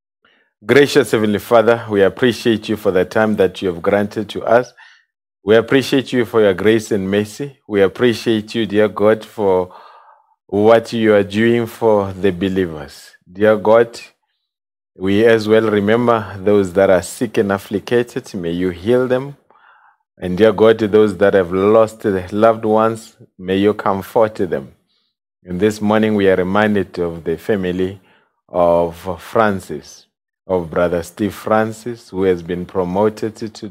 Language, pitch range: English, 95-110 Hz